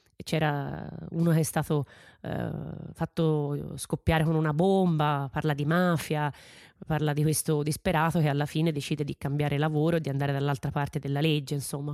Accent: native